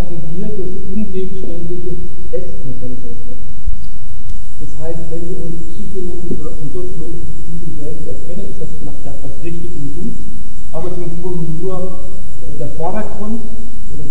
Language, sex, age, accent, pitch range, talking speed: German, male, 50-69, German, 150-175 Hz, 110 wpm